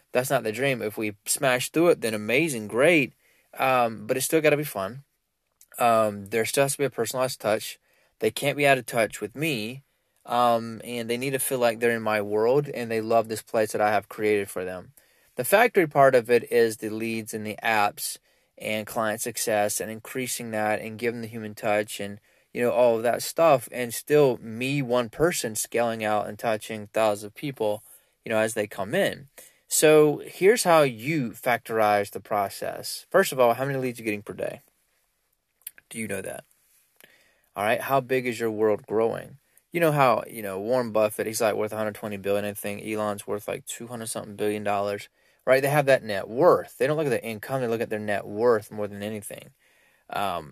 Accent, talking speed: American, 215 wpm